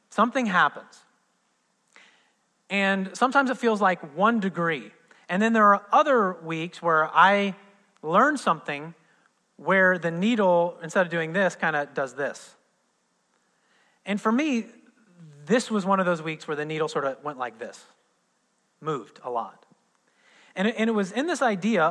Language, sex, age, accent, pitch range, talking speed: English, male, 30-49, American, 165-220 Hz, 155 wpm